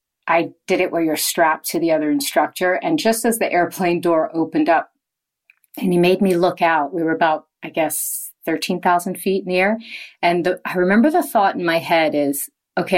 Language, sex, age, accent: English, female, 40-59, American